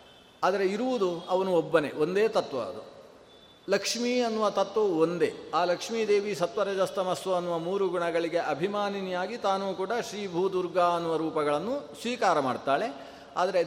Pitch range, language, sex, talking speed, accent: 170-210 Hz, Kannada, male, 125 wpm, native